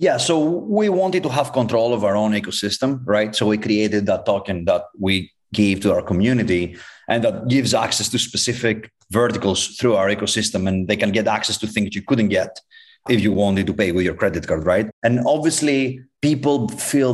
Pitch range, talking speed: 100-125 Hz, 200 wpm